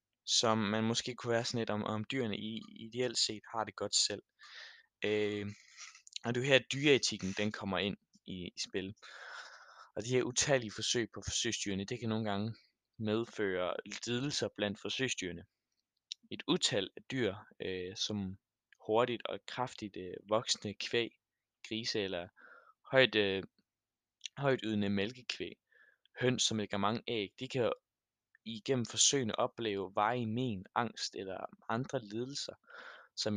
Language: Danish